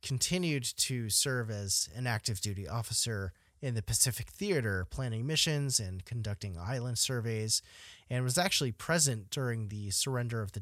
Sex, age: male, 30-49